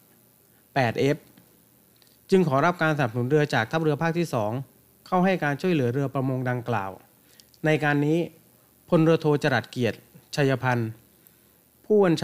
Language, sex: Thai, male